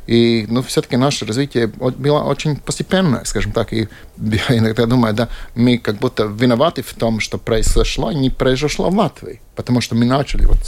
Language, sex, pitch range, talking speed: Russian, male, 105-125 Hz, 180 wpm